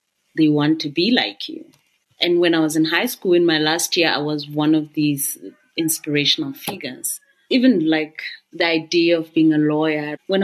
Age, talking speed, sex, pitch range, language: 30-49, 190 wpm, female, 155-190 Hz, English